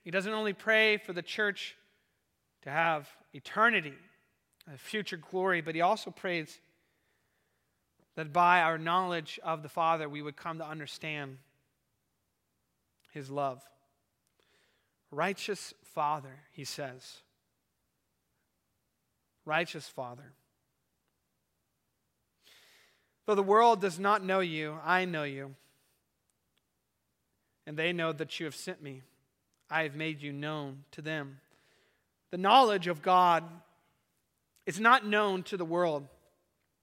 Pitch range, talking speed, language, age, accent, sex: 155-220 Hz, 115 wpm, English, 30-49, American, male